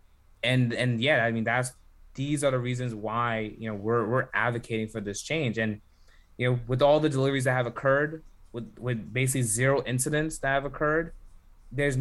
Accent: American